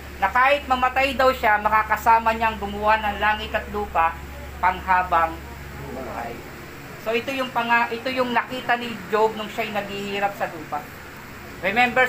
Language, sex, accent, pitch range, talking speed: Filipino, female, native, 205-245 Hz, 140 wpm